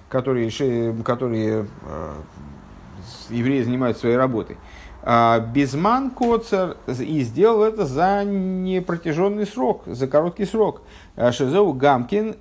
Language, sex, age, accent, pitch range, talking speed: Russian, male, 50-69, native, 110-145 Hz, 100 wpm